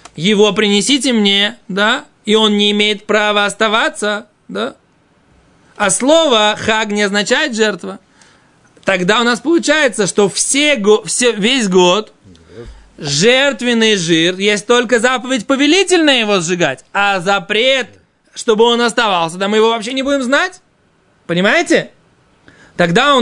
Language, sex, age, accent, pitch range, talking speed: Russian, male, 20-39, native, 205-260 Hz, 120 wpm